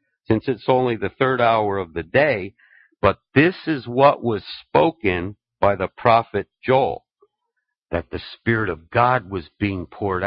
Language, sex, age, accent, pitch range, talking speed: English, male, 50-69, American, 105-135 Hz, 160 wpm